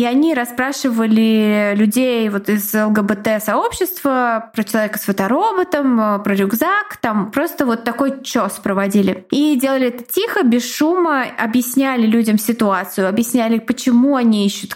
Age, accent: 20-39, native